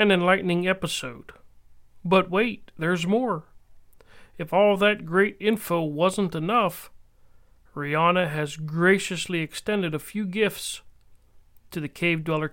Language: English